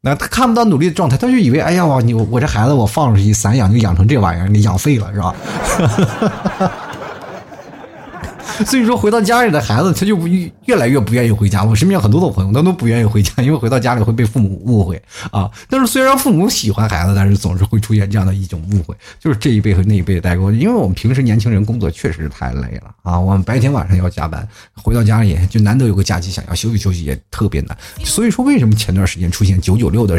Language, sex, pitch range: Chinese, male, 95-125 Hz